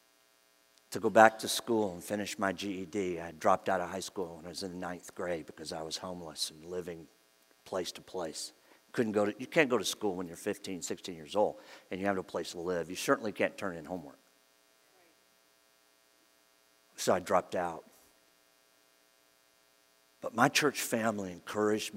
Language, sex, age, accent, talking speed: English, male, 50-69, American, 180 wpm